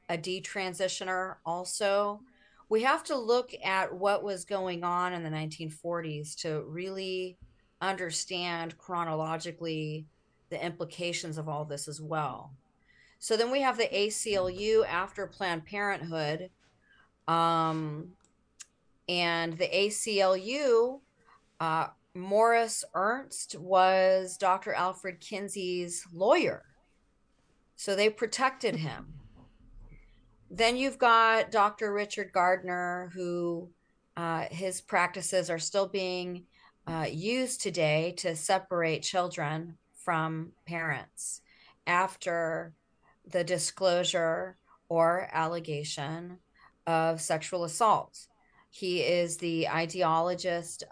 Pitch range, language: 160-190 Hz, English